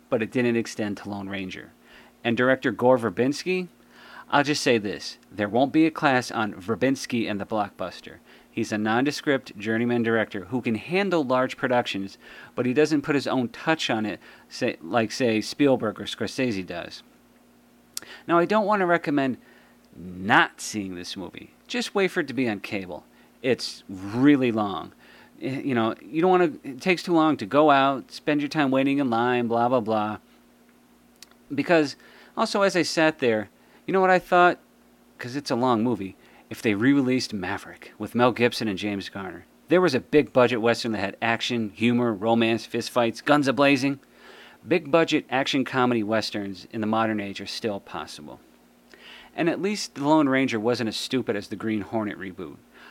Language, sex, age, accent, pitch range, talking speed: English, male, 40-59, American, 110-145 Hz, 185 wpm